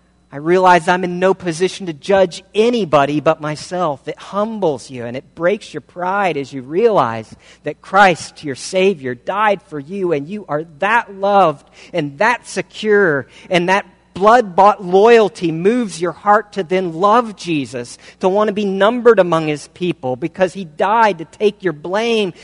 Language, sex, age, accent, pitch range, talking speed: English, male, 50-69, American, 140-190 Hz, 170 wpm